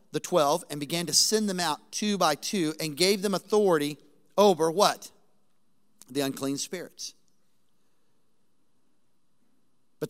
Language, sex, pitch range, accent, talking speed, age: English, male, 170-210 Hz, American, 125 wpm, 40-59